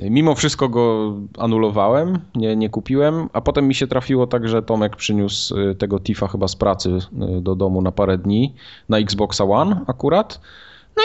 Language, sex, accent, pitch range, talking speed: Polish, male, native, 105-130 Hz, 170 wpm